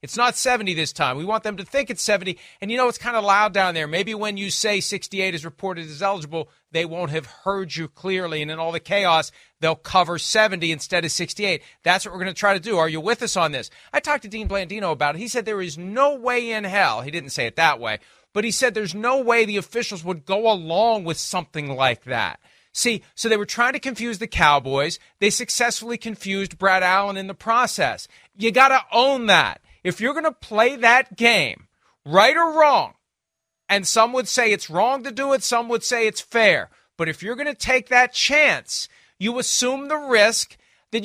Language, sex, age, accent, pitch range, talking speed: English, male, 40-59, American, 185-250 Hz, 230 wpm